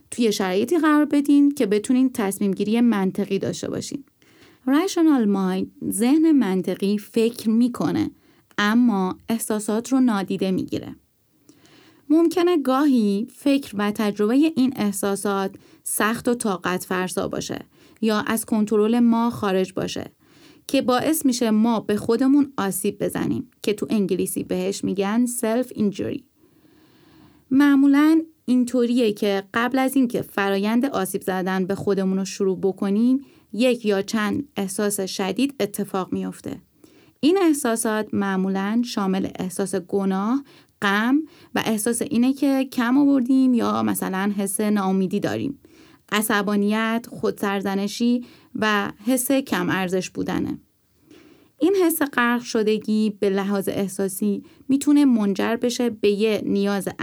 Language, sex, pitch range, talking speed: Persian, female, 200-265 Hz, 120 wpm